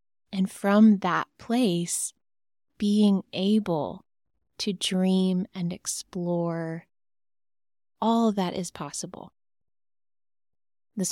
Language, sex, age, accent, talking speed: English, female, 20-39, American, 80 wpm